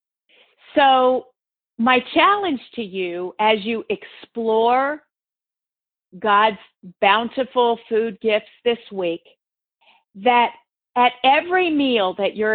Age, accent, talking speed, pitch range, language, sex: 50-69, American, 95 wpm, 205-270 Hz, English, female